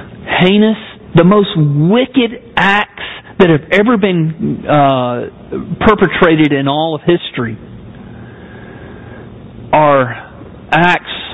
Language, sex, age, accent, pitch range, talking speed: English, male, 50-69, American, 140-180 Hz, 90 wpm